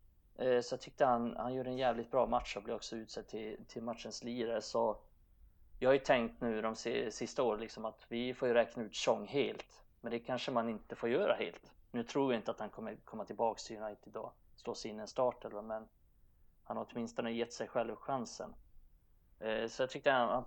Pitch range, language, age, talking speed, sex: 105-120 Hz, Swedish, 30-49, 210 wpm, male